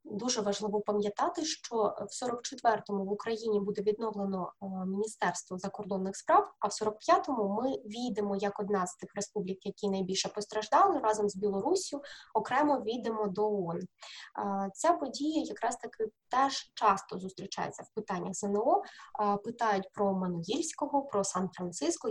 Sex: female